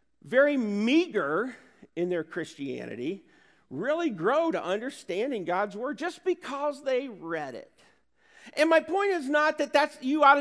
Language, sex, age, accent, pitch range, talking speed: English, male, 50-69, American, 200-285 Hz, 145 wpm